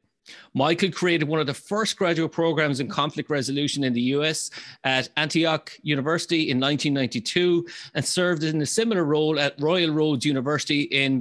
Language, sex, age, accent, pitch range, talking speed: English, male, 30-49, Irish, 140-170 Hz, 160 wpm